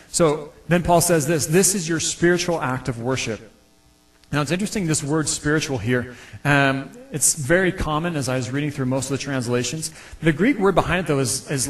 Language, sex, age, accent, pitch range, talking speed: English, male, 30-49, American, 125-170 Hz, 205 wpm